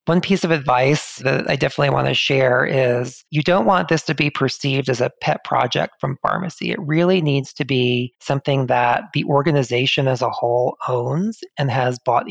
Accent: American